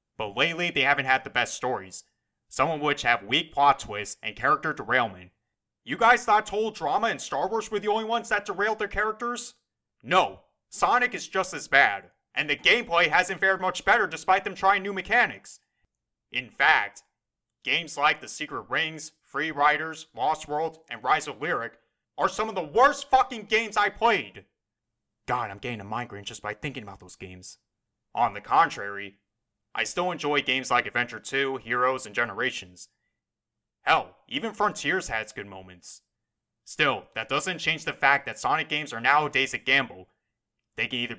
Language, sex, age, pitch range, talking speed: English, male, 30-49, 110-180 Hz, 180 wpm